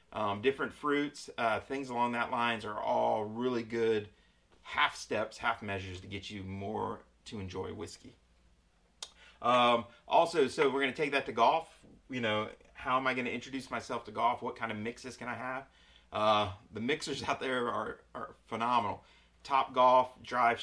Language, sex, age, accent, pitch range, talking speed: English, male, 30-49, American, 105-125 Hz, 180 wpm